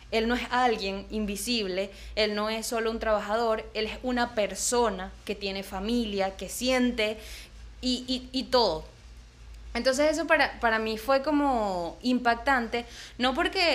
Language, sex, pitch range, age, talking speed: Spanish, female, 210-255 Hz, 20-39, 150 wpm